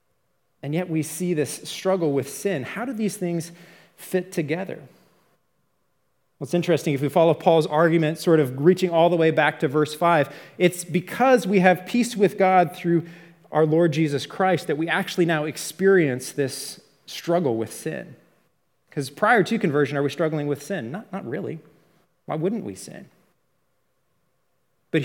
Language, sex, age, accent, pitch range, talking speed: English, male, 30-49, American, 150-190 Hz, 170 wpm